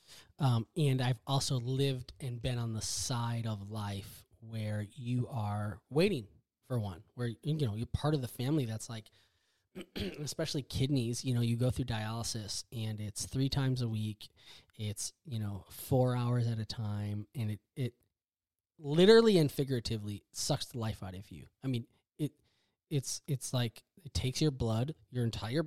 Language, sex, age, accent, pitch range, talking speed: English, male, 20-39, American, 105-135 Hz, 175 wpm